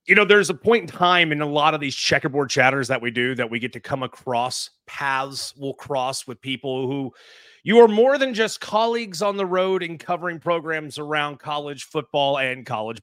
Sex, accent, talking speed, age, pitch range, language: male, American, 210 wpm, 30-49, 140-185 Hz, English